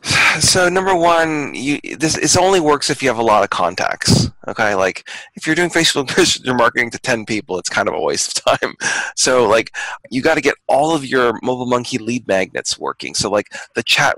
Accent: American